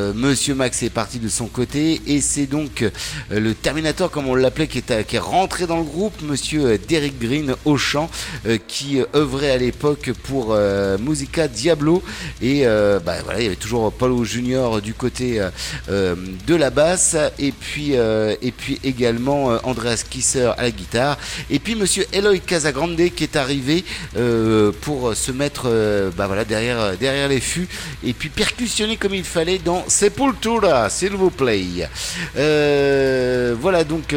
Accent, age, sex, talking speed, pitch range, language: French, 50-69, male, 185 wpm, 125-170 Hz, French